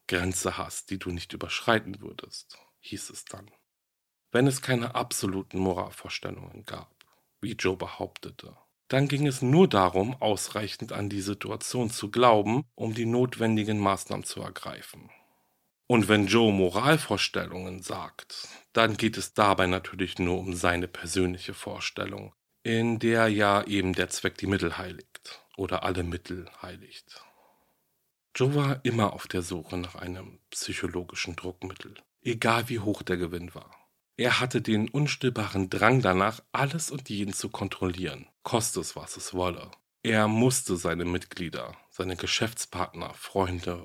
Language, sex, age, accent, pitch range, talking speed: German, male, 40-59, German, 90-115 Hz, 140 wpm